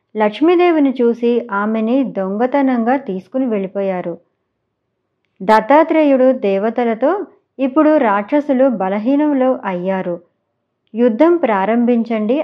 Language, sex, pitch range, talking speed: Telugu, male, 205-280 Hz, 70 wpm